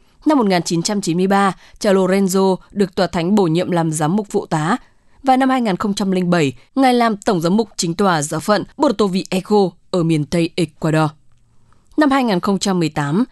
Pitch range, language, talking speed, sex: 165-215 Hz, English, 150 wpm, female